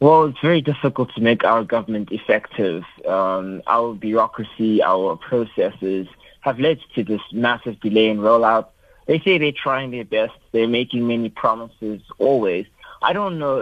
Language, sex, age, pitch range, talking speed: English, male, 30-49, 110-130 Hz, 160 wpm